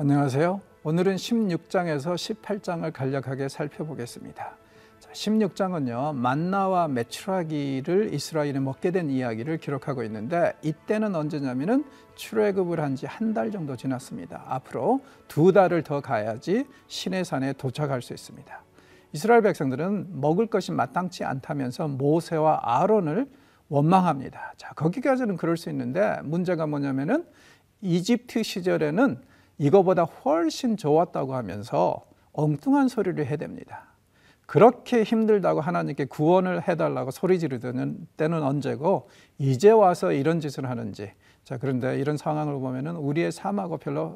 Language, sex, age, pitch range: Korean, male, 50-69, 140-195 Hz